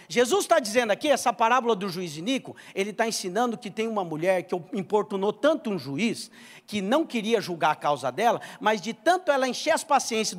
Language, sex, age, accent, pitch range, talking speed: English, male, 50-69, Brazilian, 200-295 Hz, 200 wpm